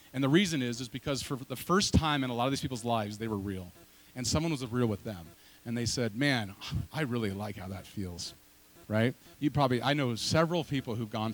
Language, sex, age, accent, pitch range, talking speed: English, male, 30-49, American, 110-150 Hz, 240 wpm